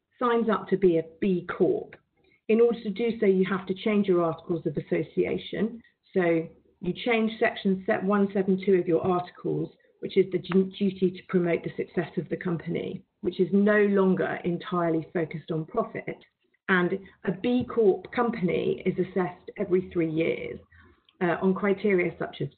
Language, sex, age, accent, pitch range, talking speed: English, female, 40-59, British, 180-220 Hz, 165 wpm